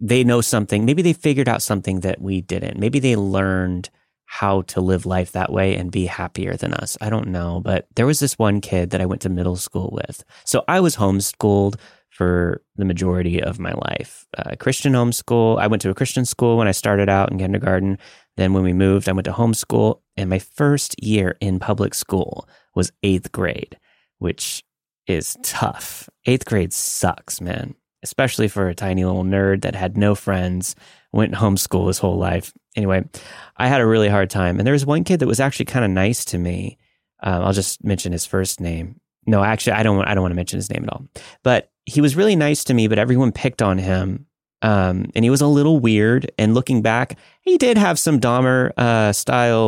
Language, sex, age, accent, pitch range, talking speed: English, male, 30-49, American, 95-125 Hz, 210 wpm